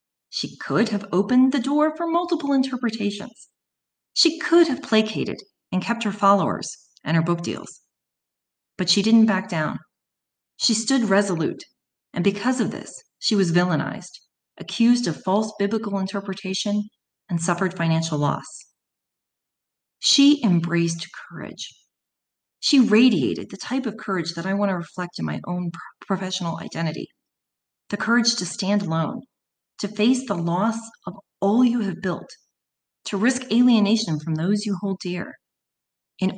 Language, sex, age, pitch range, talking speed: English, female, 30-49, 175-230 Hz, 145 wpm